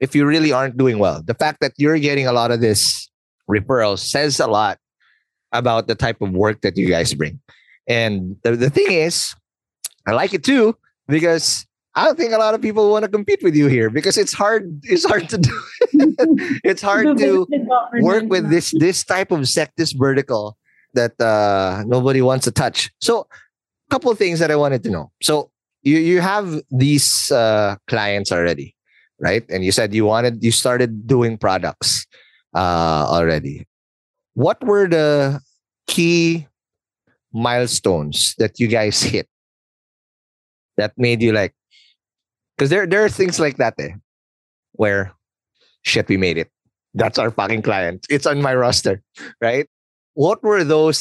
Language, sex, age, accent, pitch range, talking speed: English, male, 30-49, Filipino, 110-165 Hz, 170 wpm